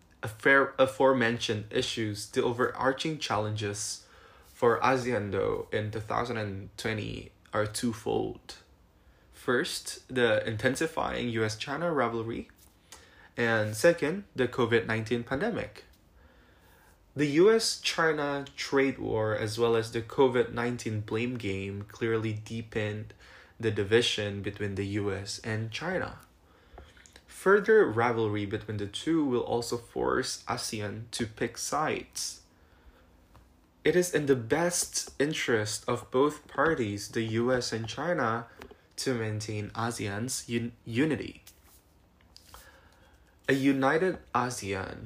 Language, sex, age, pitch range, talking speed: Indonesian, male, 20-39, 105-125 Hz, 105 wpm